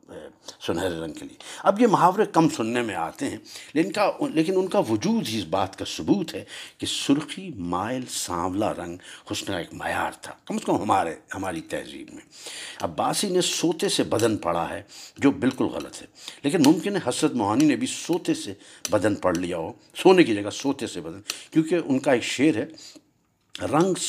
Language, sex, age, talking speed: Urdu, male, 60-79, 190 wpm